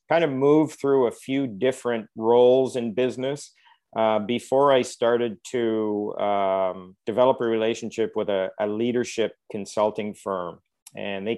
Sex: male